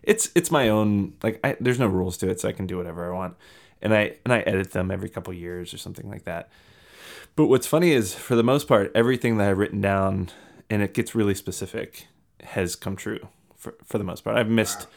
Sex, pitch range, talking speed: male, 95-115 Hz, 235 wpm